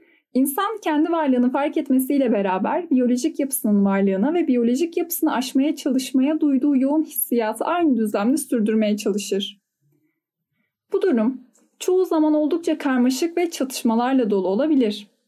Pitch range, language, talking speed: 215-295 Hz, Turkish, 120 wpm